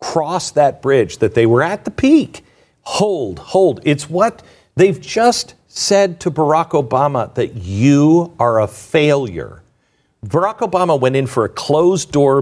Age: 50-69